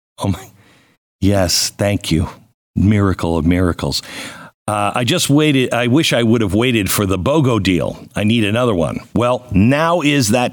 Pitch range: 110-145 Hz